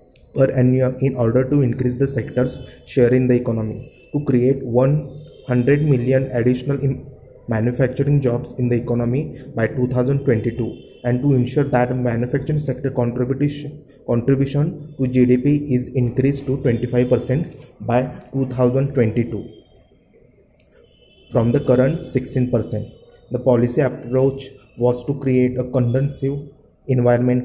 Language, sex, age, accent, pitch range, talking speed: English, male, 20-39, Indian, 125-135 Hz, 115 wpm